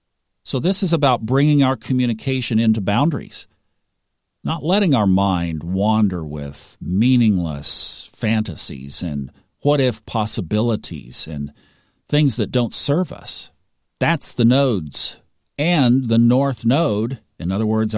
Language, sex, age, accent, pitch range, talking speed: English, male, 50-69, American, 95-130 Hz, 120 wpm